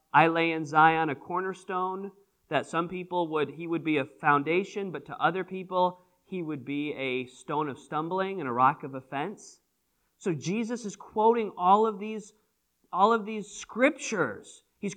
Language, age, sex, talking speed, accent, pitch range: English, 40-59, male, 165 wpm, American, 125-185 Hz